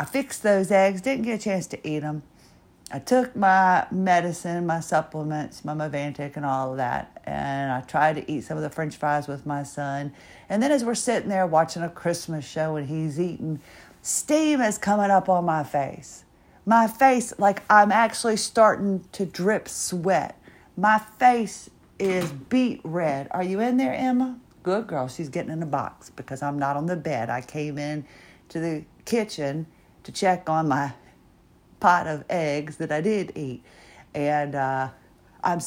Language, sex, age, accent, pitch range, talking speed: English, female, 50-69, American, 150-215 Hz, 180 wpm